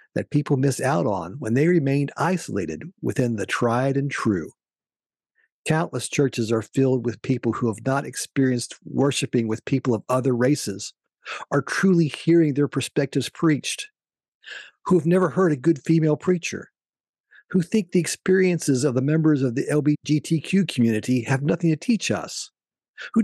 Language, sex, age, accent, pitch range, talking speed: English, male, 50-69, American, 125-180 Hz, 155 wpm